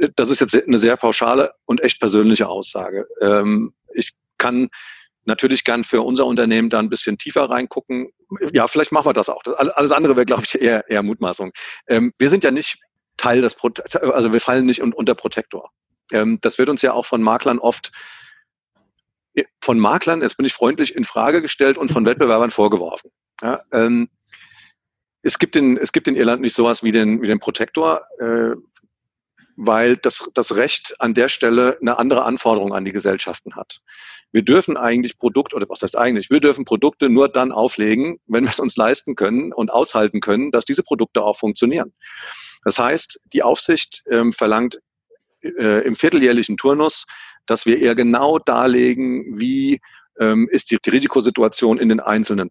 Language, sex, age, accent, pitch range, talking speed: German, male, 40-59, German, 110-130 Hz, 170 wpm